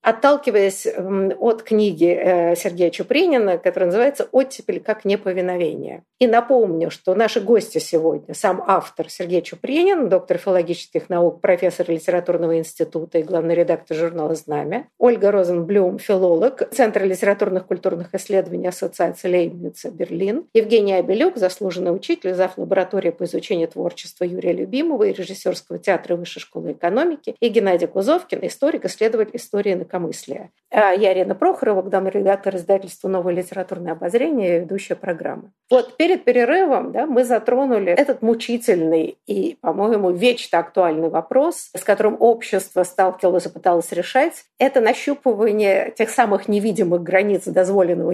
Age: 50-69